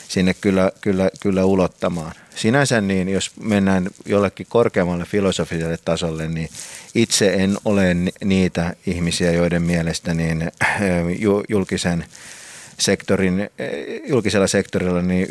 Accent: native